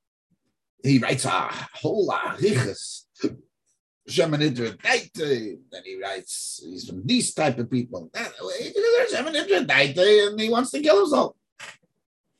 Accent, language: American, English